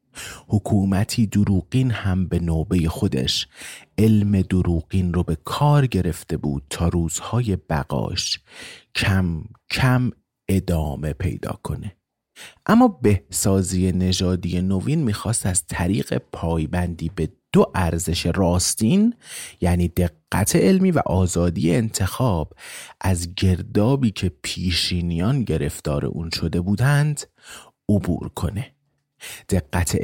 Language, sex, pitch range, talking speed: Persian, male, 85-110 Hz, 100 wpm